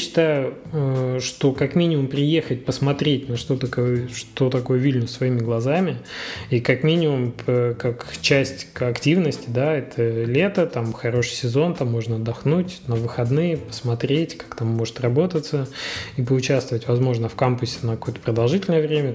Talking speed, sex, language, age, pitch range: 145 wpm, male, Russian, 20-39, 120-145 Hz